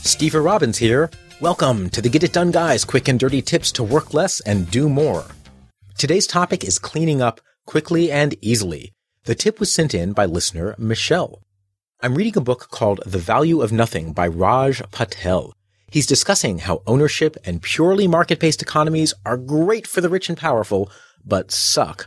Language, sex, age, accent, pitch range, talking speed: English, male, 30-49, American, 100-160 Hz, 175 wpm